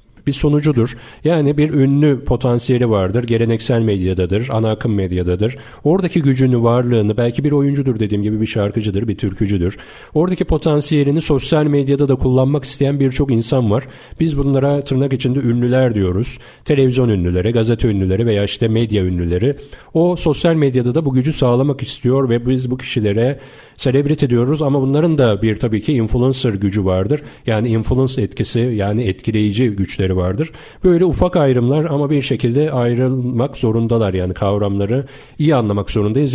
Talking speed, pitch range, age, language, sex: 150 wpm, 110-140 Hz, 40-59, Turkish, male